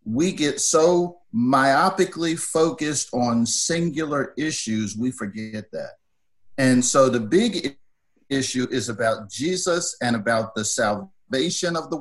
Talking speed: 125 wpm